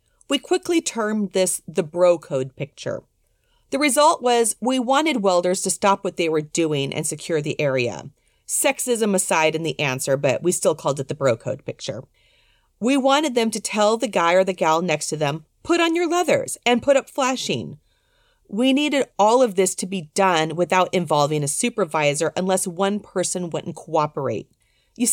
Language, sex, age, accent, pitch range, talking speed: English, female, 40-59, American, 160-245 Hz, 185 wpm